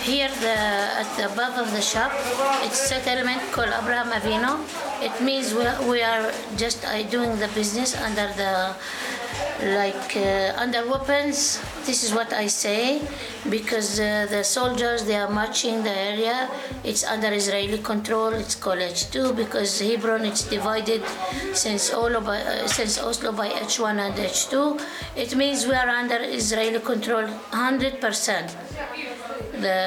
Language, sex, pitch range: Japanese, female, 215-255 Hz